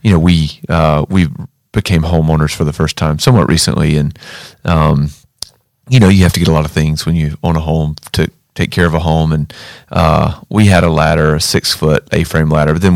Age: 40-59